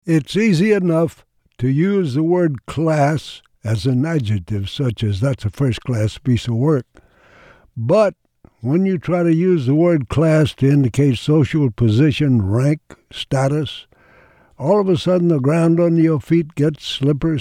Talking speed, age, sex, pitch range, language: 155 wpm, 60-79, male, 125-160 Hz, English